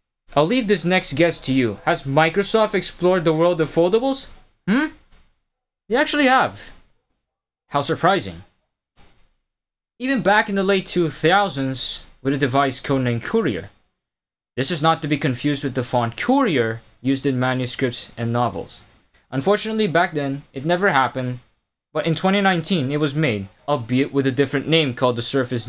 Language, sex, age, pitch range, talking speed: English, male, 20-39, 135-190 Hz, 155 wpm